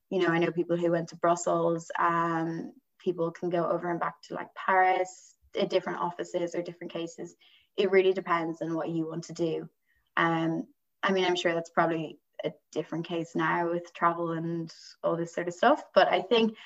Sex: female